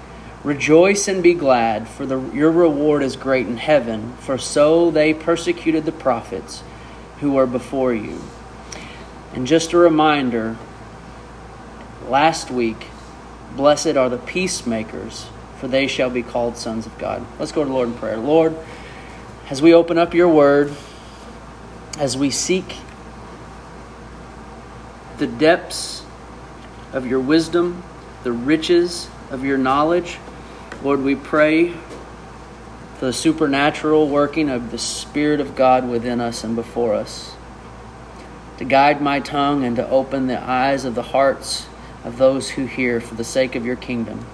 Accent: American